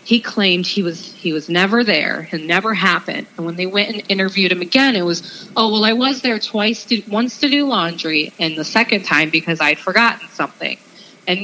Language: English